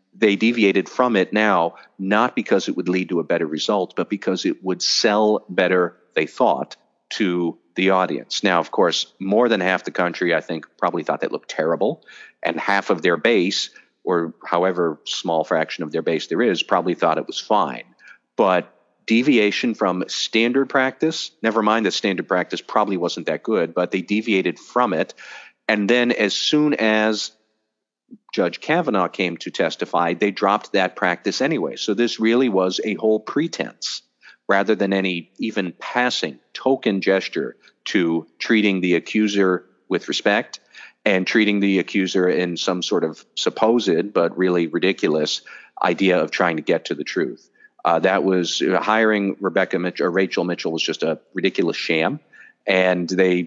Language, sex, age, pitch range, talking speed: English, male, 40-59, 90-110 Hz, 165 wpm